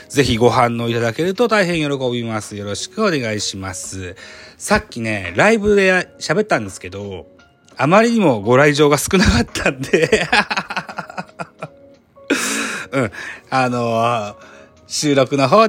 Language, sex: Japanese, male